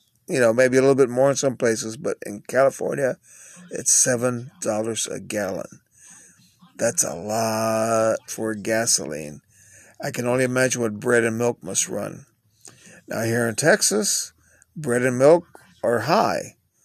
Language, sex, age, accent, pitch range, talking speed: English, male, 40-59, American, 115-135 Hz, 145 wpm